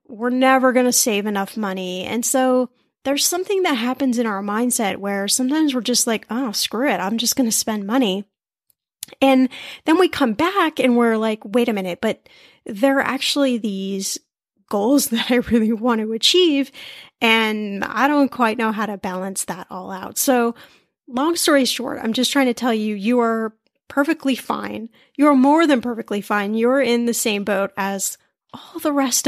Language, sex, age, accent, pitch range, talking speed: English, female, 10-29, American, 210-265 Hz, 190 wpm